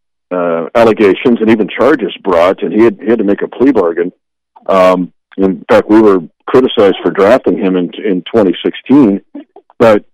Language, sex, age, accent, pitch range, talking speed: English, male, 50-69, American, 90-115 Hz, 165 wpm